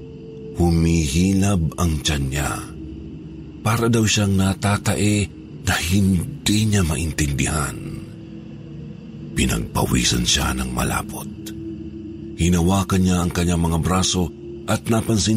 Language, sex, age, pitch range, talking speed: Filipino, male, 50-69, 75-105 Hz, 95 wpm